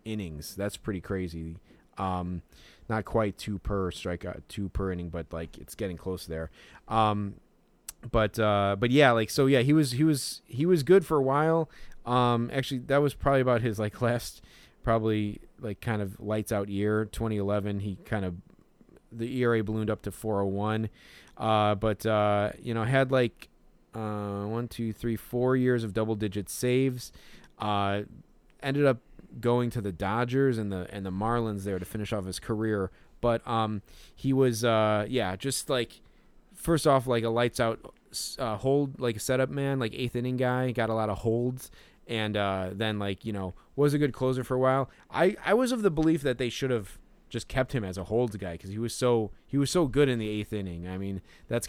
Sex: male